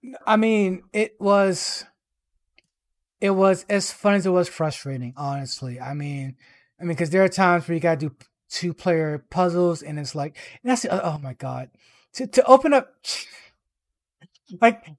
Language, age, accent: English, 30-49, American